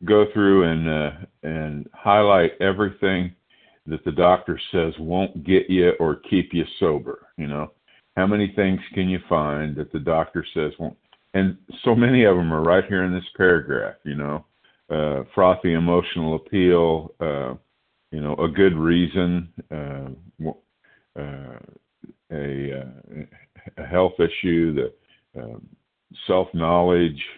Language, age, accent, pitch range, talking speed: English, 50-69, American, 80-95 Hz, 140 wpm